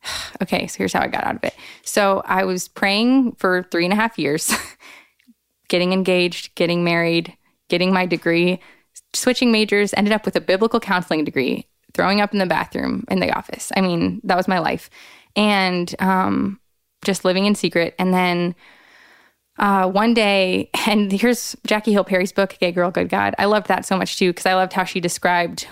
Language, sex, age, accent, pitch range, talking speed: English, female, 20-39, American, 175-200 Hz, 190 wpm